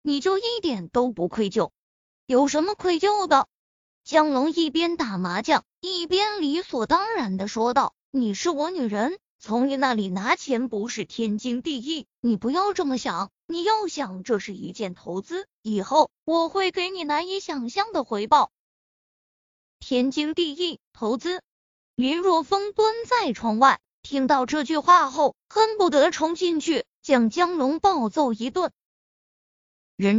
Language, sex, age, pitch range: Chinese, female, 20-39, 245-345 Hz